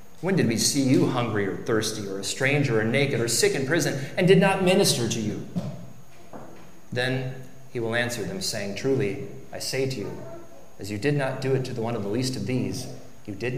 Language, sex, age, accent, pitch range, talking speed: English, male, 30-49, American, 125-170 Hz, 220 wpm